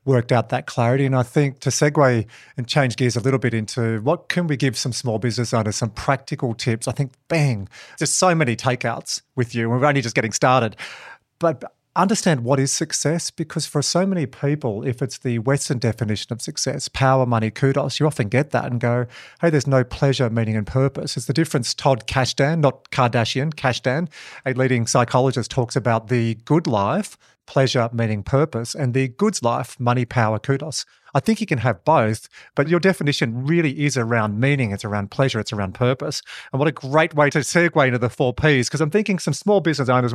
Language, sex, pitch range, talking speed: English, male, 125-155 Hz, 205 wpm